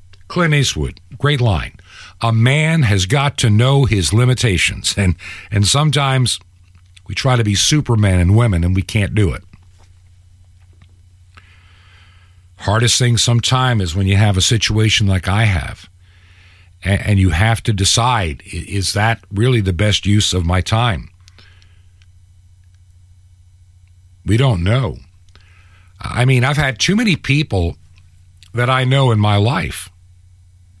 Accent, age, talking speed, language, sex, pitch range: American, 50-69, 135 wpm, English, male, 90-115 Hz